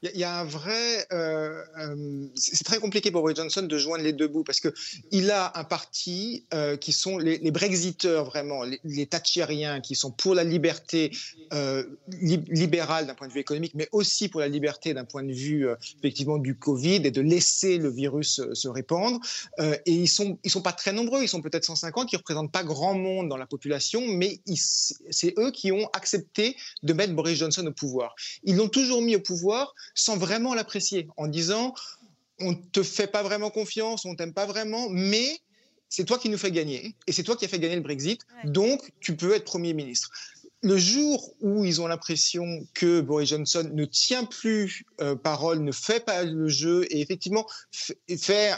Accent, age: French, 30-49